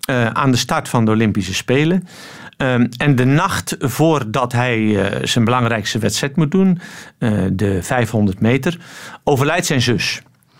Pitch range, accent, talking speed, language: 110-150 Hz, Dutch, 155 wpm, Dutch